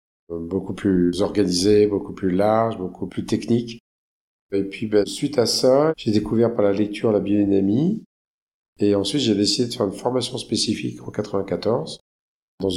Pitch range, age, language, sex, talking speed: 95-110 Hz, 50-69, French, male, 160 wpm